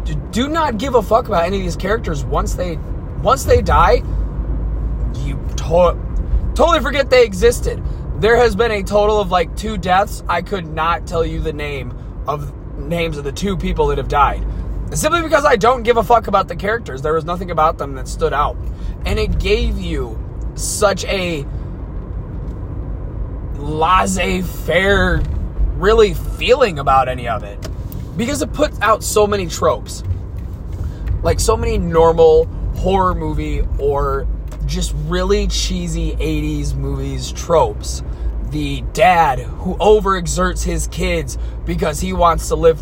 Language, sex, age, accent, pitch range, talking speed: English, male, 20-39, American, 125-180 Hz, 150 wpm